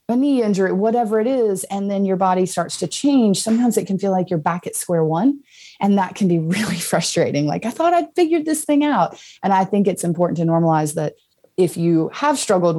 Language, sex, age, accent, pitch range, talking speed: English, female, 30-49, American, 165-220 Hz, 230 wpm